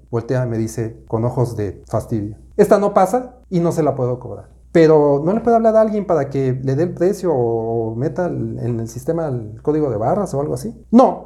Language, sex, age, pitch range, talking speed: Spanish, male, 40-59, 135-195 Hz, 235 wpm